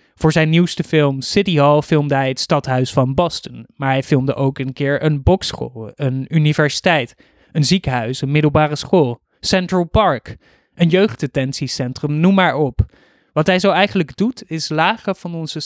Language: Dutch